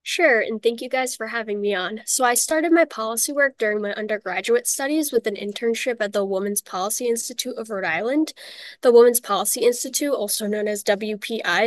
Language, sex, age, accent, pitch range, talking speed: English, female, 10-29, American, 210-250 Hz, 195 wpm